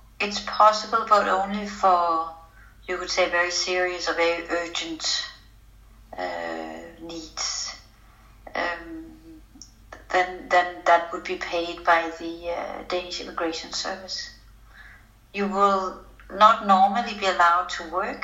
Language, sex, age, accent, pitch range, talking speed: English, female, 60-79, Danish, 160-190 Hz, 120 wpm